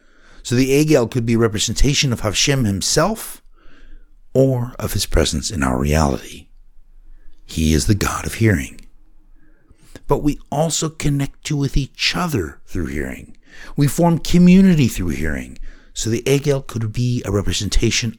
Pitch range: 95-135 Hz